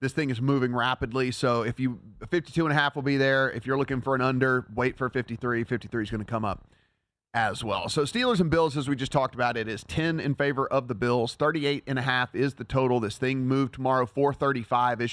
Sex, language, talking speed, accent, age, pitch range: male, English, 220 wpm, American, 30-49, 120-150 Hz